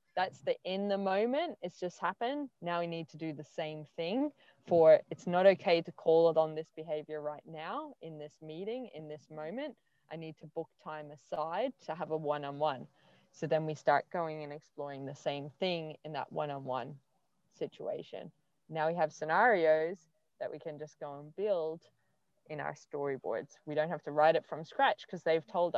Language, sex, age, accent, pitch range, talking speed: English, female, 20-39, Australian, 155-195 Hz, 195 wpm